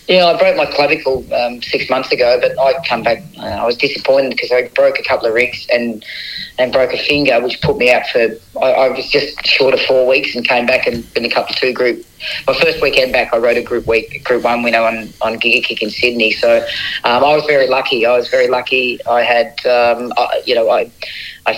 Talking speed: 250 wpm